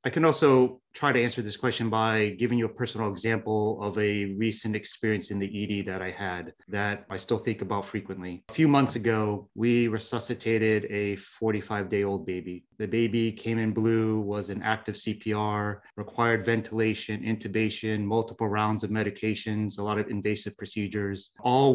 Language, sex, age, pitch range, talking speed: English, male, 30-49, 105-120 Hz, 170 wpm